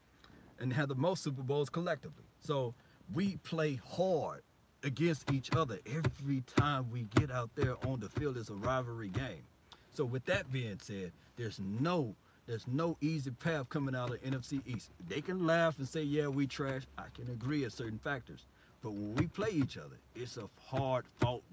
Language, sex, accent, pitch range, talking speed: English, male, American, 120-150 Hz, 185 wpm